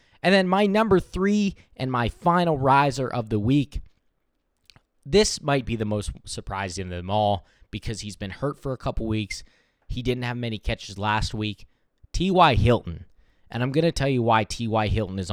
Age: 20-39